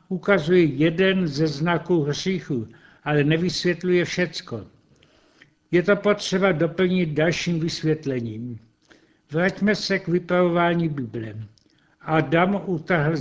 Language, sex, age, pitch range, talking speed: Czech, male, 60-79, 150-180 Hz, 95 wpm